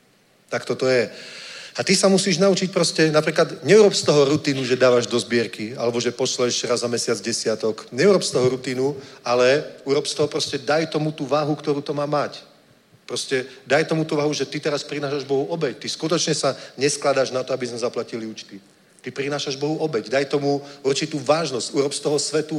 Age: 40-59